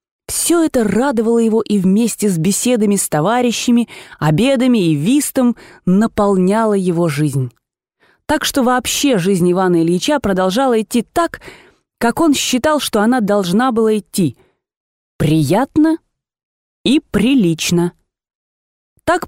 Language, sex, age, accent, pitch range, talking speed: Russian, female, 20-39, native, 170-255 Hz, 120 wpm